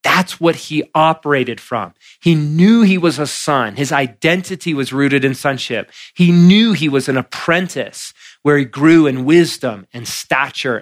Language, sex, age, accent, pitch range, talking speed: English, male, 30-49, American, 130-165 Hz, 165 wpm